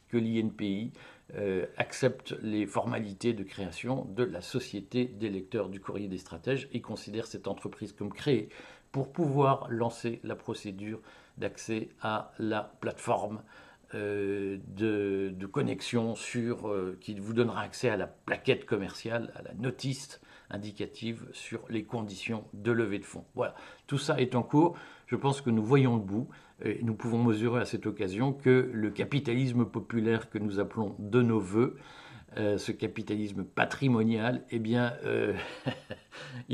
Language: French